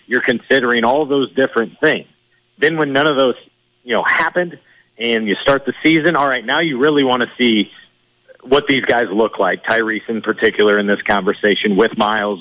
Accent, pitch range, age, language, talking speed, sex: American, 115-140 Hz, 50-69, English, 195 wpm, male